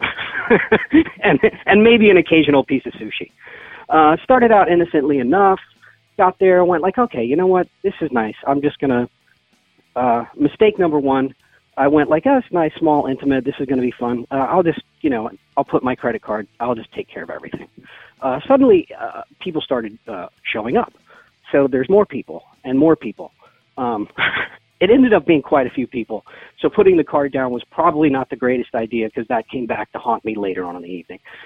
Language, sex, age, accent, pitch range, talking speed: English, male, 40-59, American, 120-175 Hz, 205 wpm